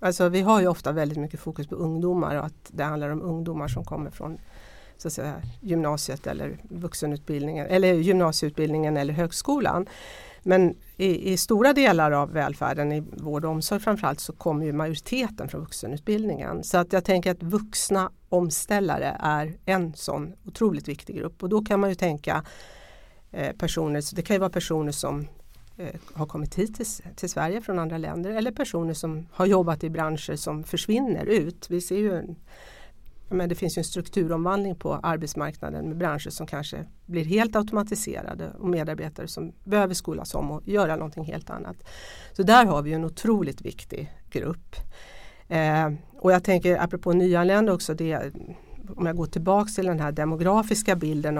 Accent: native